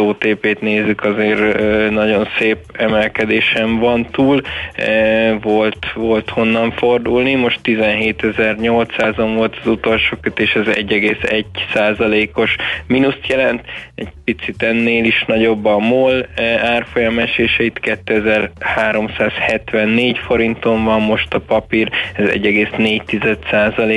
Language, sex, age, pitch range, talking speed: Hungarian, male, 20-39, 105-115 Hz, 95 wpm